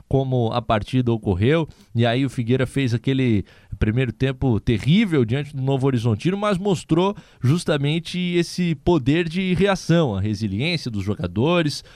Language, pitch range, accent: Portuguese, 115-155 Hz, Brazilian